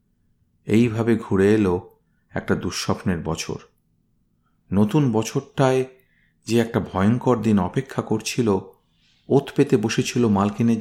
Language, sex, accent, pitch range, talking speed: Bengali, male, native, 100-135 Hz, 100 wpm